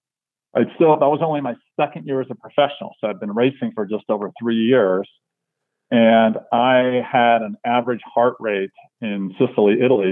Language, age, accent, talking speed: English, 40-59, American, 180 wpm